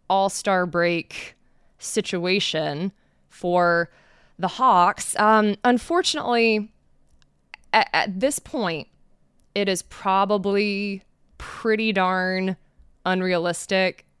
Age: 20-39